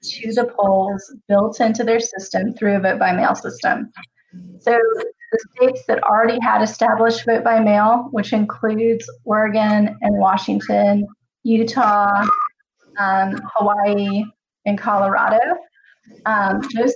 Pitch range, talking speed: 210-245 Hz, 125 wpm